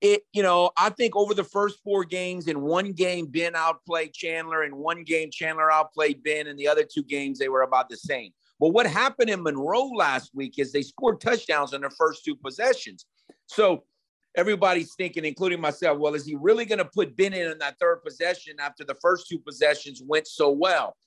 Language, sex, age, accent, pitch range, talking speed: English, male, 50-69, American, 150-210 Hz, 210 wpm